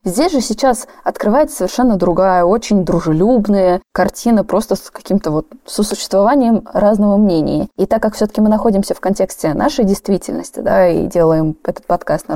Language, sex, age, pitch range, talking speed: Russian, female, 20-39, 175-205 Hz, 160 wpm